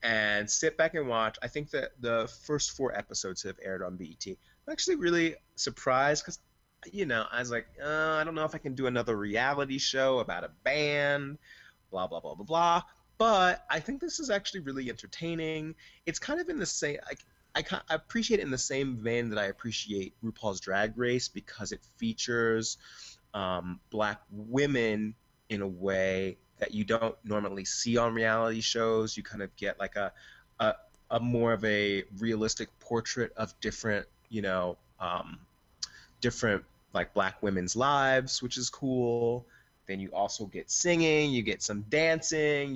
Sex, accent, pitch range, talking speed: male, American, 105-140 Hz, 180 wpm